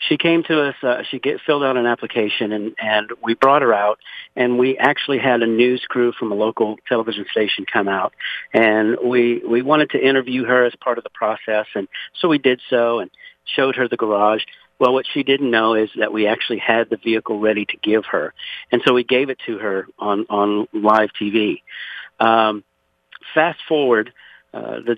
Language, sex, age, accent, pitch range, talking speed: English, male, 50-69, American, 110-135 Hz, 205 wpm